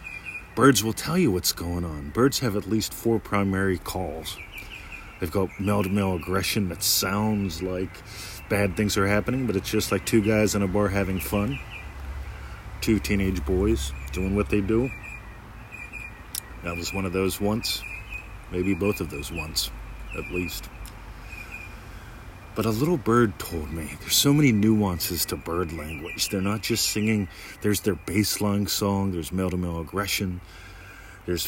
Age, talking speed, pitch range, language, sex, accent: 40-59, 155 wpm, 90-105 Hz, English, male, American